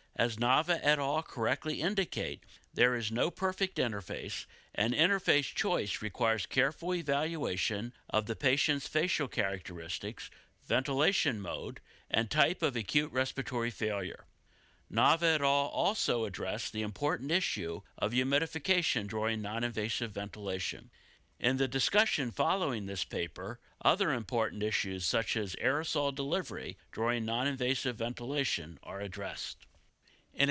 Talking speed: 120 wpm